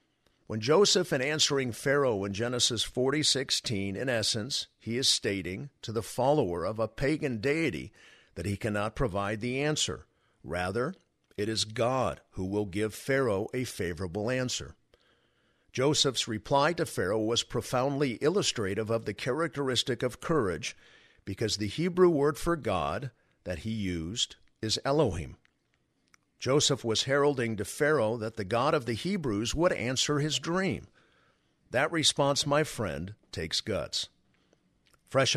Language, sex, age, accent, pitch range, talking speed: English, male, 50-69, American, 105-140 Hz, 140 wpm